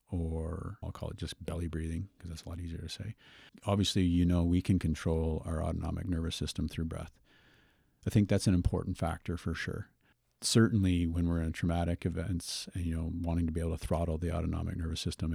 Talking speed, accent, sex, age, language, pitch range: 205 wpm, American, male, 50-69, English, 80-100 Hz